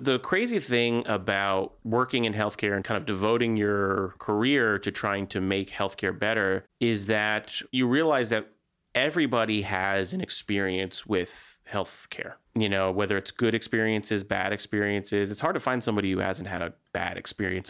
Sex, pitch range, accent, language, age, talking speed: male, 100-115 Hz, American, English, 30-49, 165 wpm